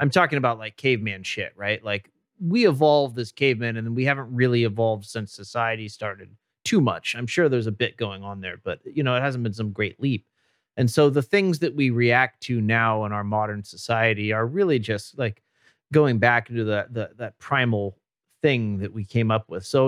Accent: American